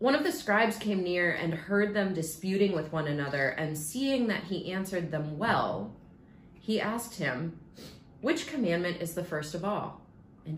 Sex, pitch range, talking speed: female, 150-180 Hz, 175 wpm